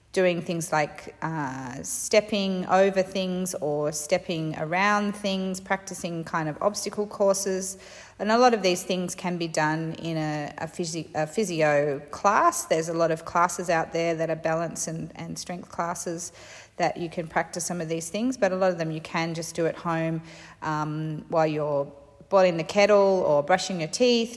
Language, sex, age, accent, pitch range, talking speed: English, female, 30-49, Australian, 160-190 Hz, 180 wpm